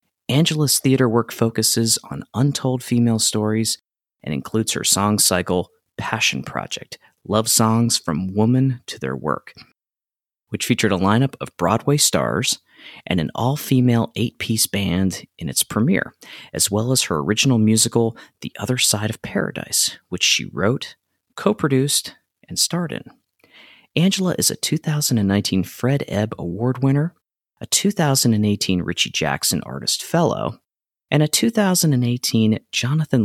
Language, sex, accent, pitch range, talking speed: English, male, American, 100-130 Hz, 130 wpm